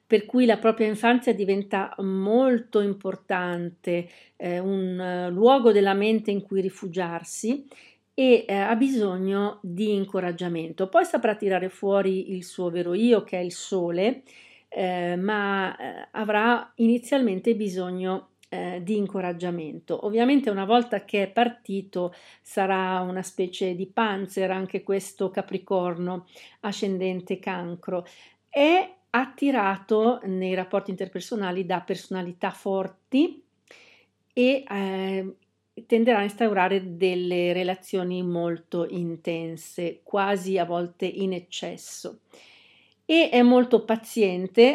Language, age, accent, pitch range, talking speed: Italian, 50-69, native, 185-220 Hz, 115 wpm